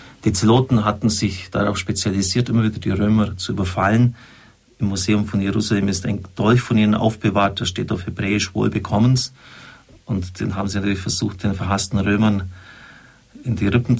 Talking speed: 165 wpm